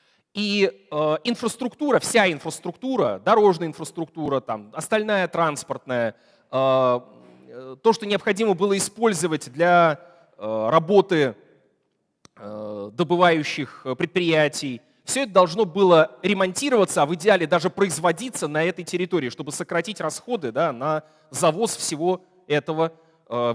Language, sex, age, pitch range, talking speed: Russian, male, 30-49, 135-195 Hz, 105 wpm